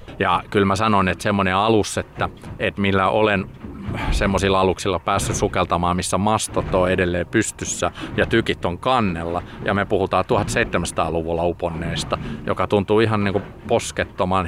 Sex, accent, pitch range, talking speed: male, native, 90-105 Hz, 140 wpm